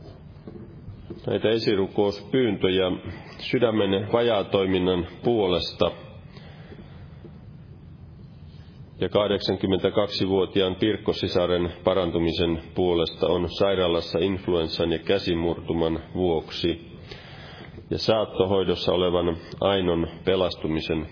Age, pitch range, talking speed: 30-49, 85-110 Hz, 60 wpm